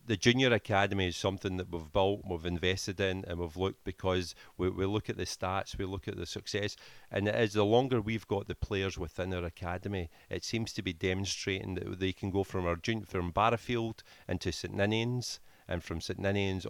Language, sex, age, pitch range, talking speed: English, male, 40-59, 90-100 Hz, 210 wpm